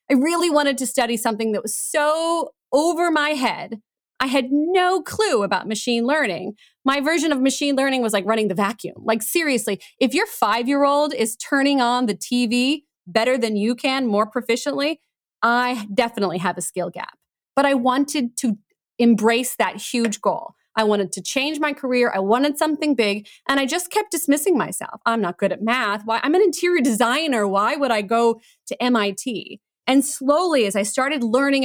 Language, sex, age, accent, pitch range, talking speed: English, female, 30-49, American, 220-285 Hz, 185 wpm